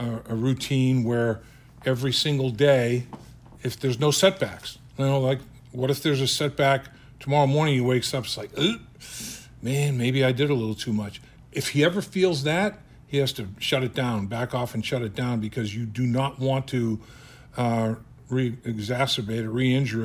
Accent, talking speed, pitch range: American, 180 wpm, 115-135 Hz